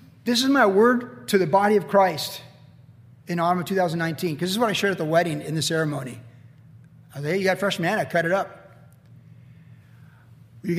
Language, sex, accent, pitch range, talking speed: English, male, American, 155-220 Hz, 210 wpm